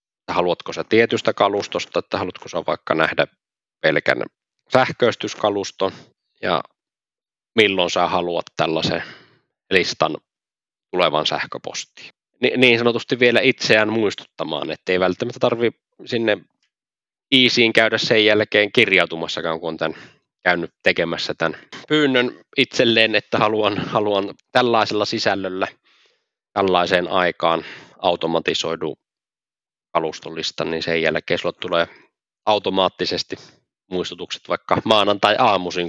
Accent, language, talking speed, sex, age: native, Finnish, 100 wpm, male, 20-39